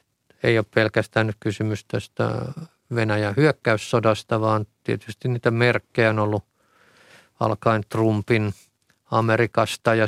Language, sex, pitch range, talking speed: Finnish, male, 105-120 Hz, 105 wpm